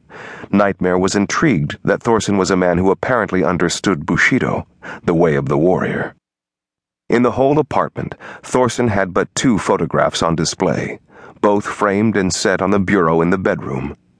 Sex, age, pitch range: male, 40-59, 85-105 Hz